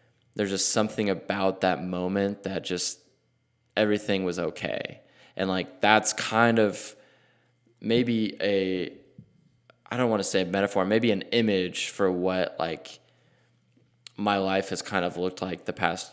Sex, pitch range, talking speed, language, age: male, 90-105 Hz, 150 wpm, English, 20-39